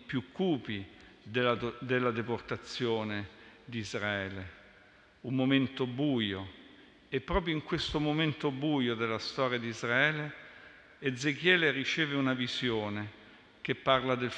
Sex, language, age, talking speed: male, Italian, 50-69, 115 wpm